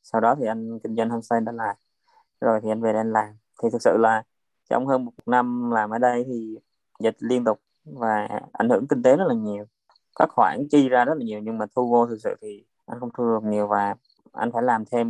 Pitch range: 110-125 Hz